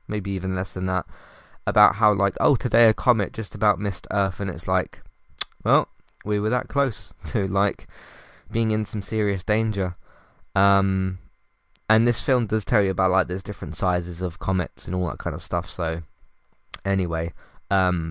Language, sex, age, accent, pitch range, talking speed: English, male, 20-39, British, 90-110 Hz, 180 wpm